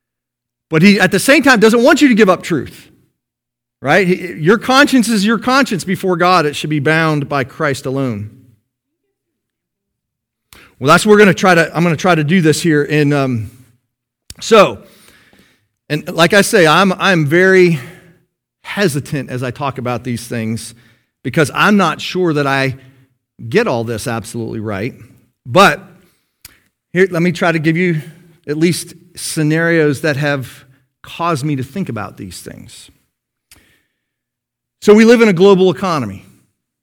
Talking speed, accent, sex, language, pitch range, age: 160 wpm, American, male, English, 120-180 Hz, 40-59